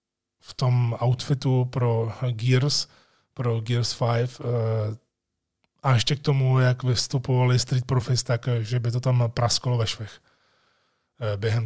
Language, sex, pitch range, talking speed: Czech, male, 120-140 Hz, 130 wpm